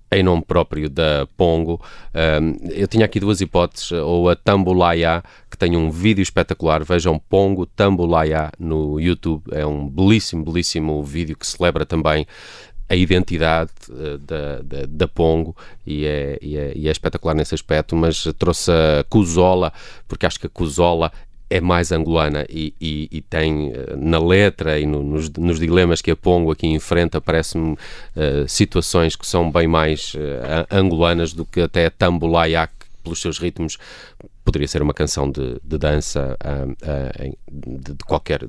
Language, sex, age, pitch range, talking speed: Portuguese, male, 30-49, 75-90 Hz, 155 wpm